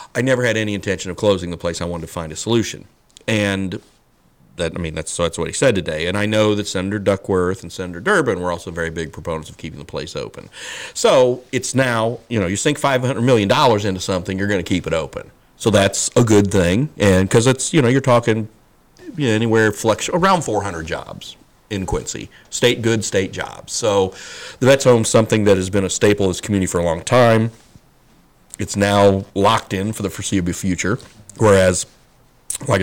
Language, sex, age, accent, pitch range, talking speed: English, male, 40-59, American, 85-115 Hz, 205 wpm